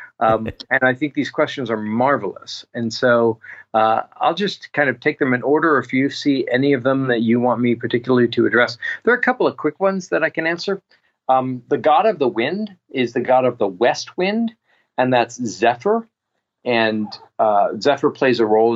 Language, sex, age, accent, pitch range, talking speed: English, male, 40-59, American, 110-145 Hz, 210 wpm